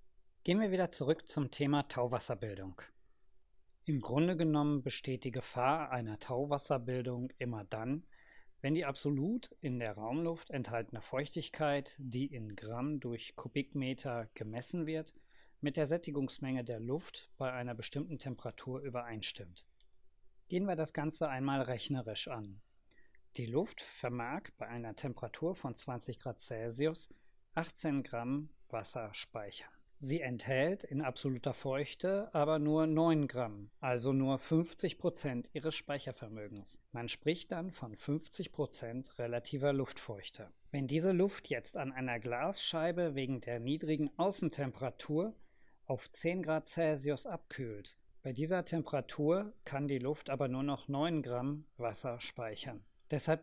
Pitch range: 125-155 Hz